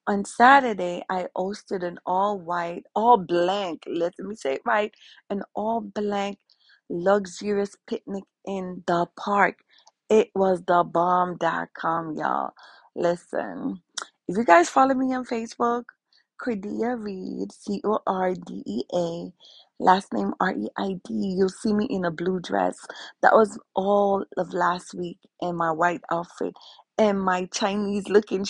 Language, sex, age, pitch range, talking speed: English, female, 30-49, 190-245 Hz, 120 wpm